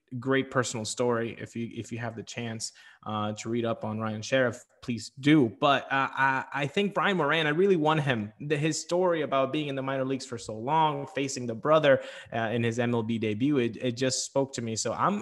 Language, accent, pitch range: English, American, 120-155 Hz